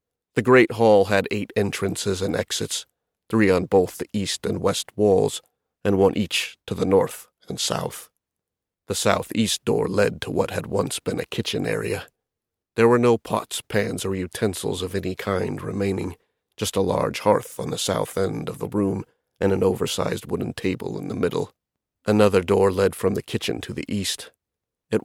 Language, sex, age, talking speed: English, male, 40-59, 180 wpm